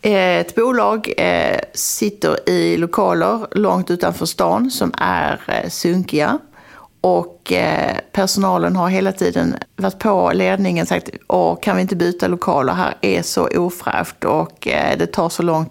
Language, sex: Swedish, female